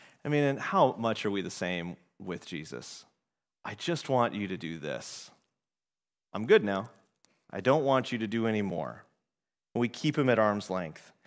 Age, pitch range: 30-49, 100-135 Hz